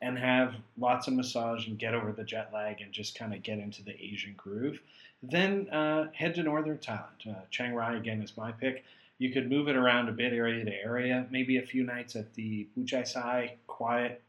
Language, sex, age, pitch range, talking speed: English, male, 40-59, 115-130 Hz, 215 wpm